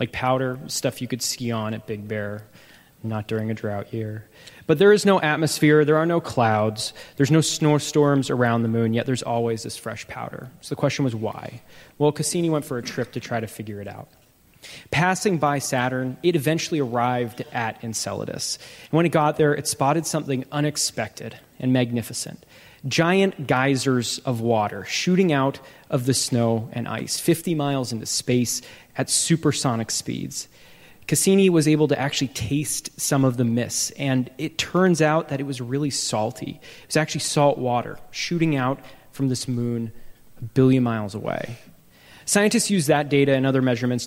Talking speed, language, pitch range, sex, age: 175 wpm, English, 120-150 Hz, male, 20-39